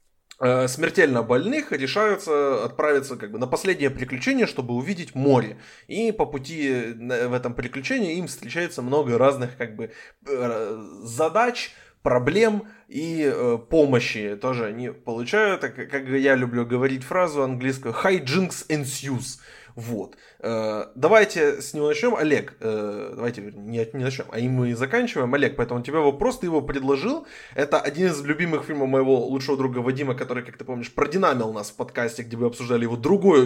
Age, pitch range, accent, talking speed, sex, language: 20-39, 120-155 Hz, native, 150 wpm, male, Ukrainian